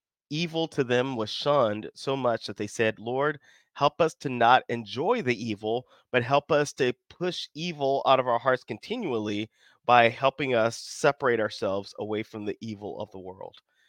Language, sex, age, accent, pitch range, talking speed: English, male, 30-49, American, 115-140 Hz, 175 wpm